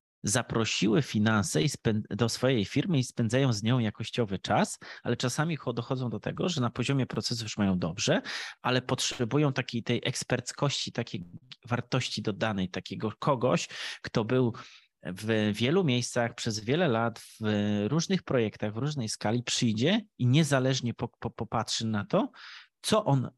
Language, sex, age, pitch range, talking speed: Polish, male, 30-49, 110-130 Hz, 145 wpm